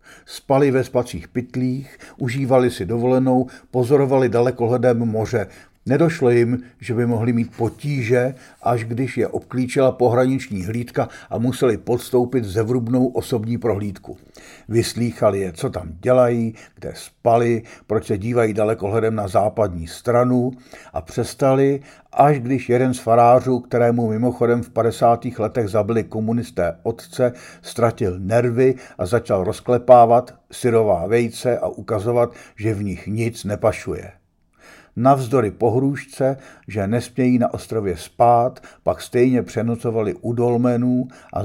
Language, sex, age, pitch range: Czech, male, 60-79, 105-125 Hz